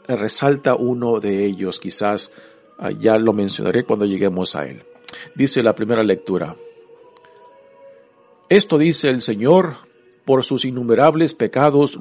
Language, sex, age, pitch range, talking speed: Spanish, male, 50-69, 115-155 Hz, 120 wpm